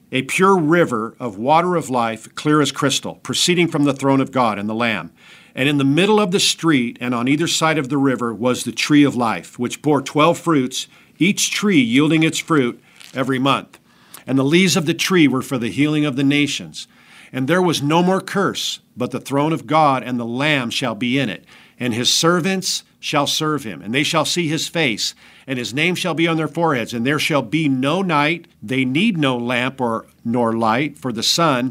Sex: male